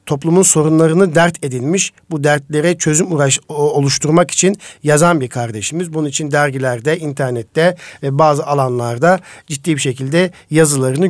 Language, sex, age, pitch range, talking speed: Turkish, male, 50-69, 135-170 Hz, 130 wpm